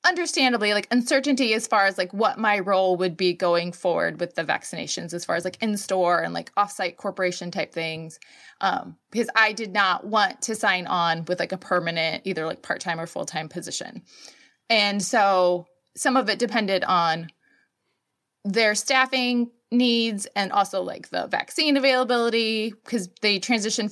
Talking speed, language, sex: 165 wpm, English, female